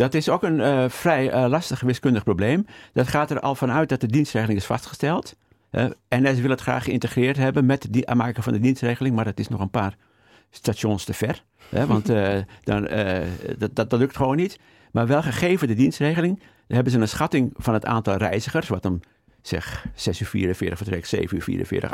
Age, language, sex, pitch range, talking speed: 50-69, Dutch, male, 105-135 Hz, 215 wpm